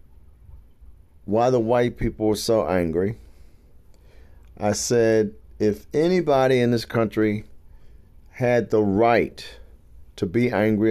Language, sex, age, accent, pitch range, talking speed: English, male, 50-69, American, 80-110 Hz, 110 wpm